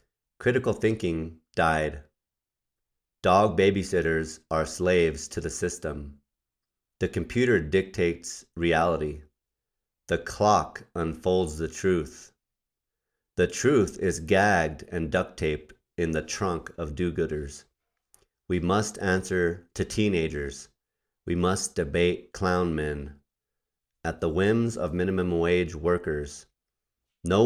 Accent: American